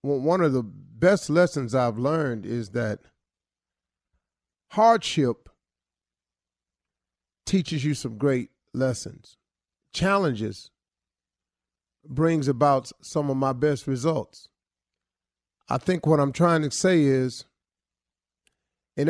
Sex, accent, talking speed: male, American, 100 wpm